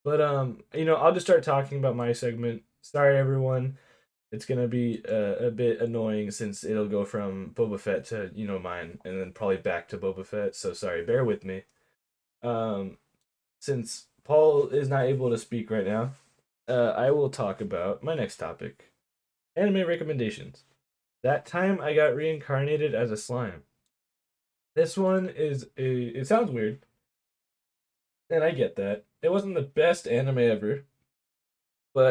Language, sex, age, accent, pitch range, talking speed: English, male, 10-29, American, 110-150 Hz, 165 wpm